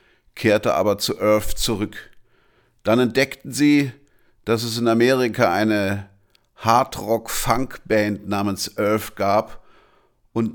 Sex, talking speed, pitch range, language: male, 120 wpm, 100-130 Hz, German